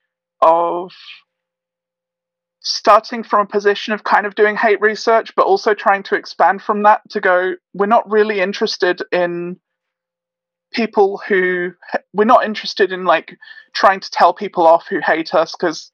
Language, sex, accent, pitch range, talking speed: English, male, British, 175-215 Hz, 155 wpm